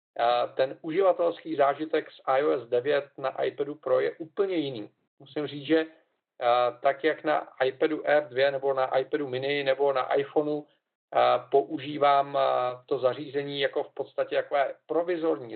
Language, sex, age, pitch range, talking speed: Czech, male, 40-59, 135-160 Hz, 135 wpm